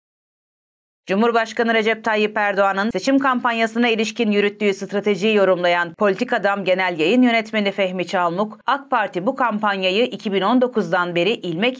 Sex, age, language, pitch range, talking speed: female, 30-49, Turkish, 195-255 Hz, 120 wpm